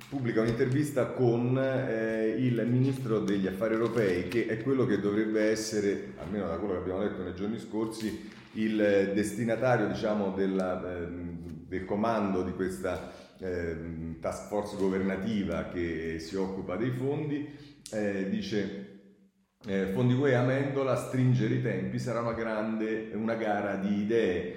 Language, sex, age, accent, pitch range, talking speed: Italian, male, 40-59, native, 95-115 Hz, 140 wpm